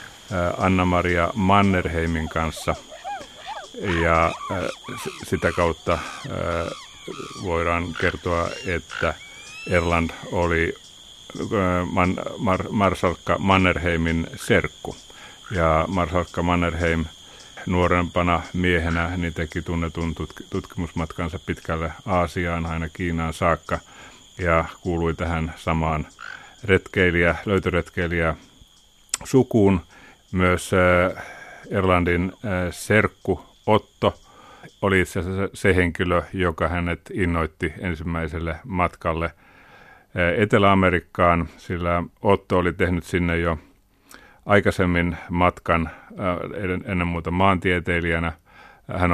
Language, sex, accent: Finnish, male, native